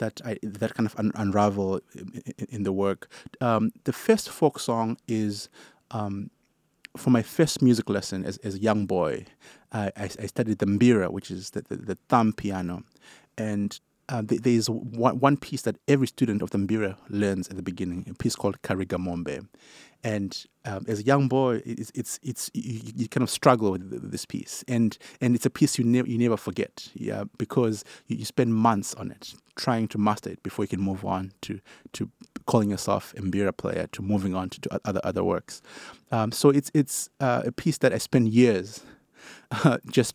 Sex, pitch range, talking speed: male, 100-125 Hz, 200 wpm